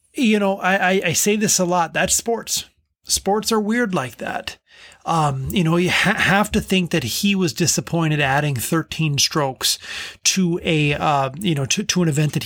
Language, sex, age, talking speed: English, male, 30-49, 195 wpm